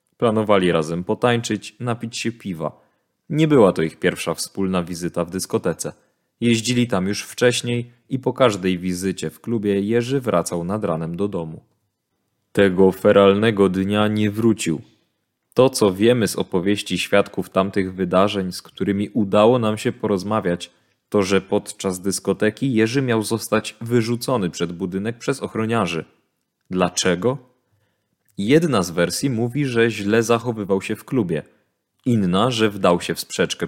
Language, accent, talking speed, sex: Polish, native, 140 wpm, male